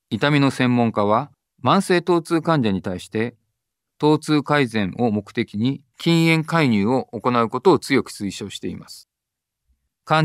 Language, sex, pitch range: Japanese, male, 110-155 Hz